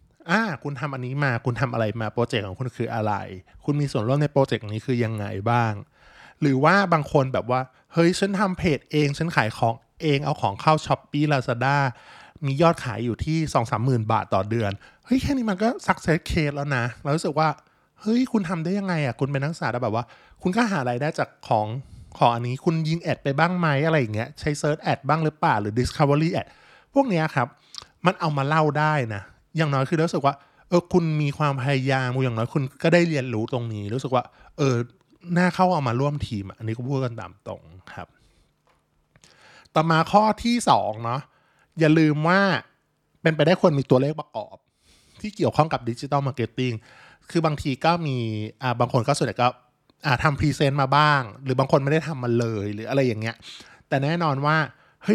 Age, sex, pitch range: 20-39, male, 120-160 Hz